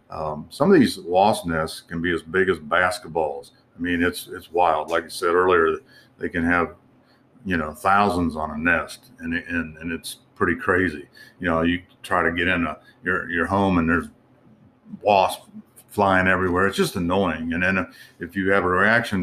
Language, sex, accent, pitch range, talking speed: English, male, American, 85-100 Hz, 195 wpm